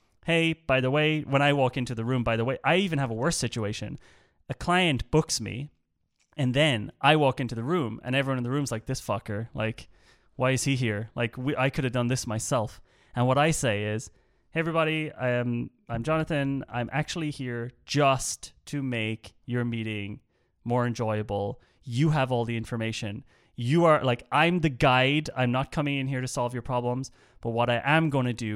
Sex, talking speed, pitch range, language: male, 205 wpm, 110-140 Hz, English